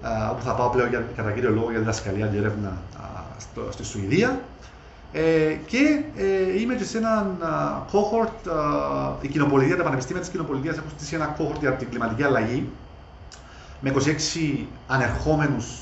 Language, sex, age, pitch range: Greek, male, 30-49, 110-150 Hz